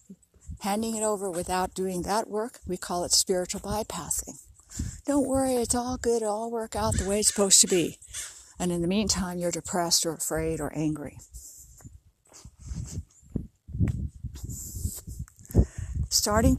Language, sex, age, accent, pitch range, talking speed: English, female, 60-79, American, 160-215 Hz, 140 wpm